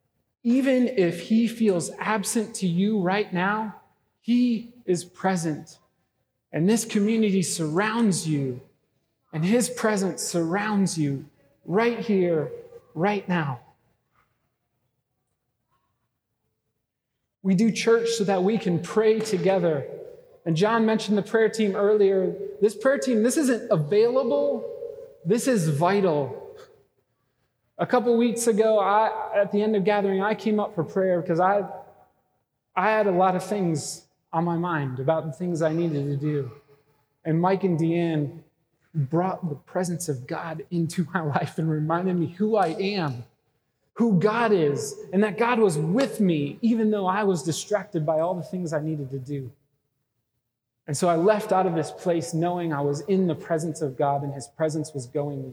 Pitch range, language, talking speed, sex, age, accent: 145-210 Hz, English, 155 wpm, male, 30-49, American